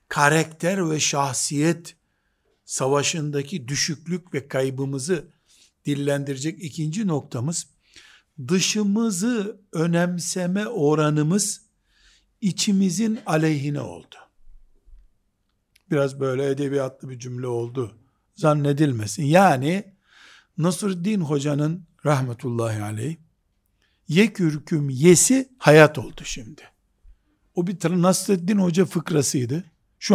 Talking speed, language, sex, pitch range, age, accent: 80 wpm, Turkish, male, 140-180 Hz, 60-79, native